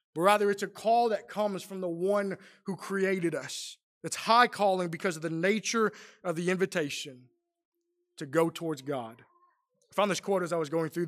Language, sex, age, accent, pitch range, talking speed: English, male, 20-39, American, 160-210 Hz, 195 wpm